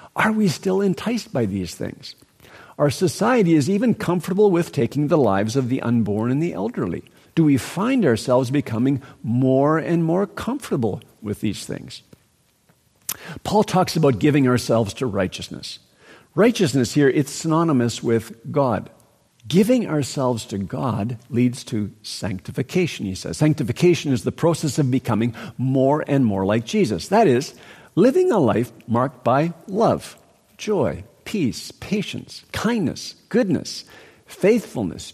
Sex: male